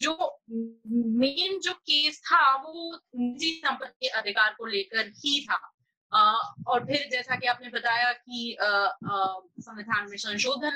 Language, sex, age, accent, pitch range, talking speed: Hindi, female, 20-39, native, 225-290 Hz, 130 wpm